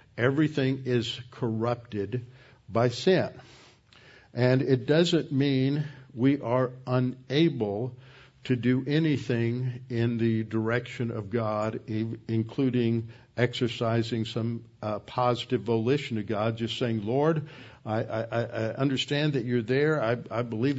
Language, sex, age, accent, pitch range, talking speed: English, male, 60-79, American, 115-135 Hz, 120 wpm